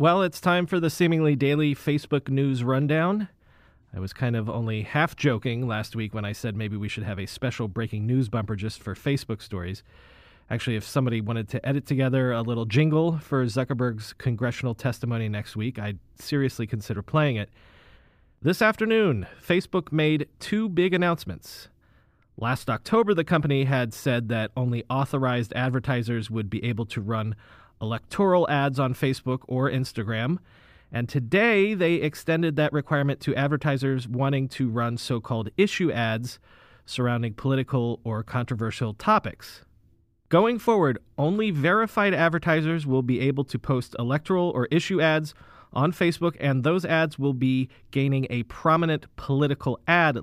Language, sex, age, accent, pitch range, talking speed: English, male, 30-49, American, 115-160 Hz, 155 wpm